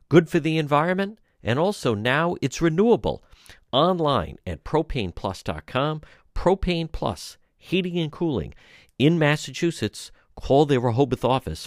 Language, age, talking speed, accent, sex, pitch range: English, 50-69, 120 wpm, American, male, 80-125 Hz